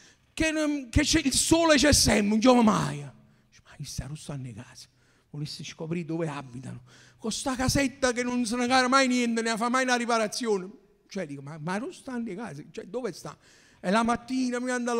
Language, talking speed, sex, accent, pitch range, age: Italian, 180 wpm, male, native, 150-240 Hz, 50-69